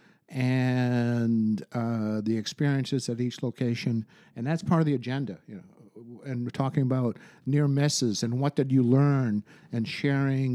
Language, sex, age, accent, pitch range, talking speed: English, male, 50-69, American, 115-135 Hz, 150 wpm